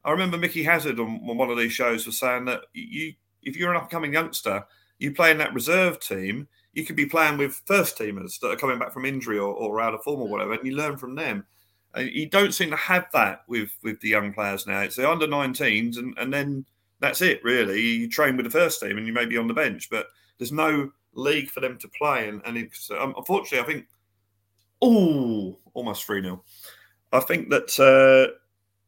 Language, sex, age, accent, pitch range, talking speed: English, male, 30-49, British, 105-145 Hz, 220 wpm